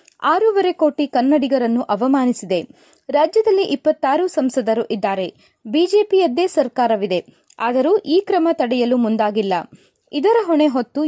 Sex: female